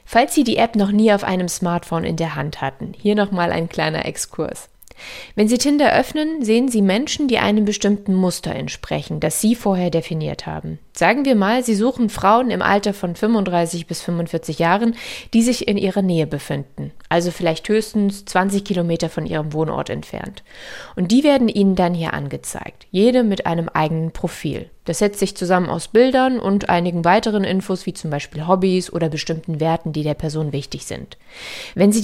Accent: German